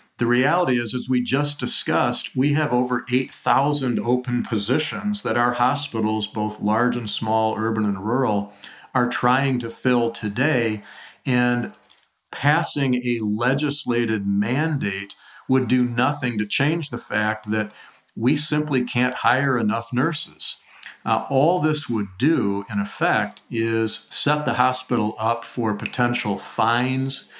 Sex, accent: male, American